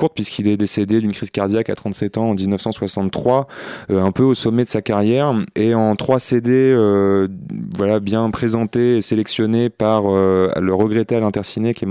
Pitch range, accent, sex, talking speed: 100-115 Hz, French, male, 185 wpm